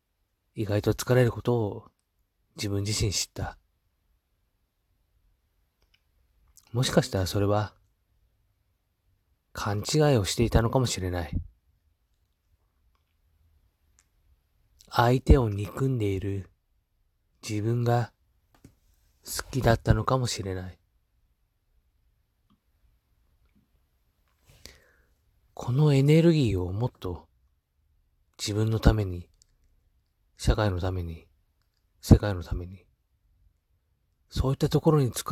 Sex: male